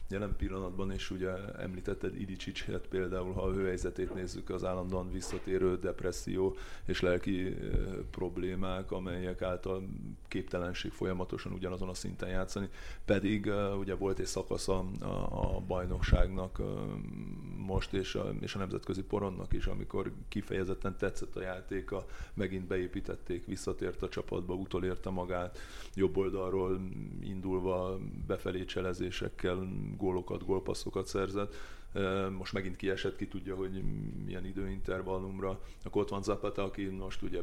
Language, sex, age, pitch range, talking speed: Hungarian, male, 30-49, 95-100 Hz, 125 wpm